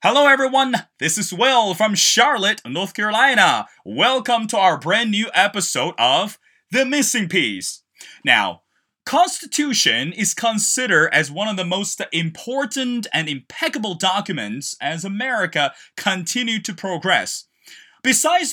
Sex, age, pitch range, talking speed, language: male, 30-49, 180-240 Hz, 125 wpm, English